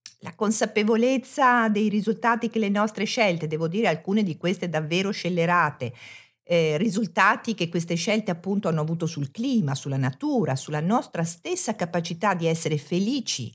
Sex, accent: female, native